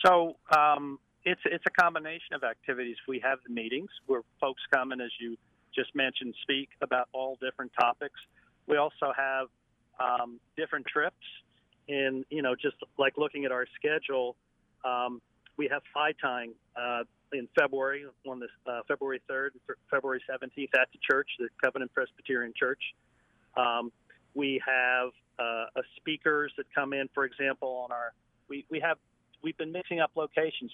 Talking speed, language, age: 160 wpm, English, 40-59